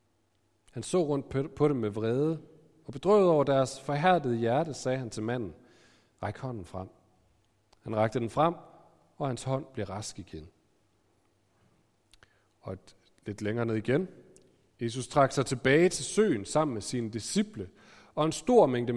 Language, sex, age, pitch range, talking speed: Danish, male, 40-59, 105-155 Hz, 160 wpm